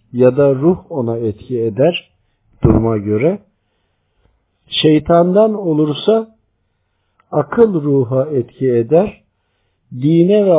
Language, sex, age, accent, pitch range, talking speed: Turkish, male, 50-69, native, 105-150 Hz, 90 wpm